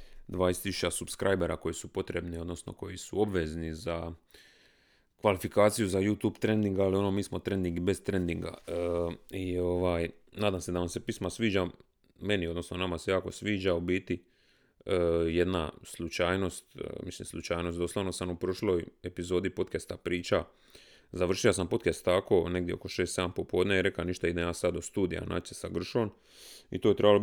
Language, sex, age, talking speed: Croatian, male, 30-49, 165 wpm